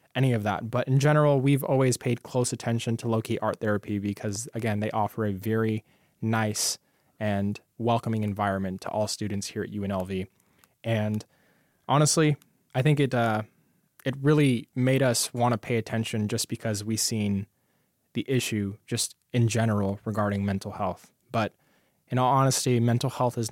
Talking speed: 165 wpm